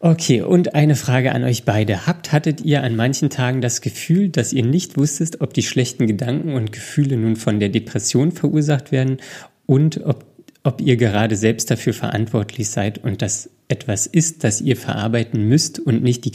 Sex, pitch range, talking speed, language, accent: male, 110-135 Hz, 185 wpm, German, German